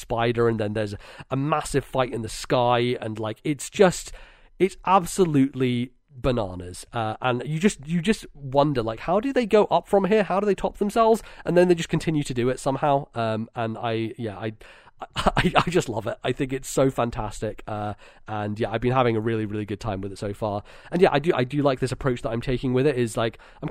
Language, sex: English, male